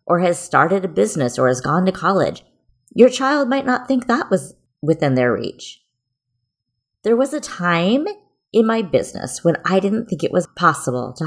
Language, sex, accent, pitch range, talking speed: English, female, American, 140-215 Hz, 185 wpm